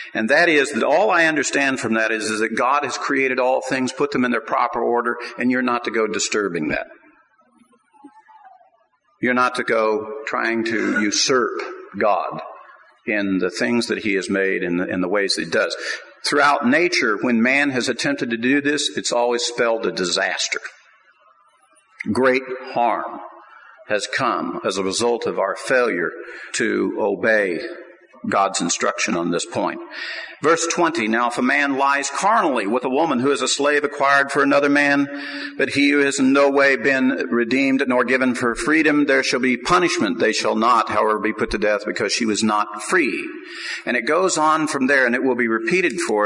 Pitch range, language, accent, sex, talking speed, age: 120-165 Hz, English, American, male, 190 wpm, 50-69